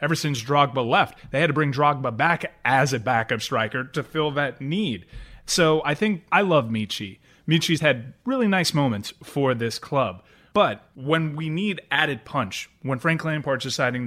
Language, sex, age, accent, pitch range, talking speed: English, male, 30-49, American, 120-160 Hz, 180 wpm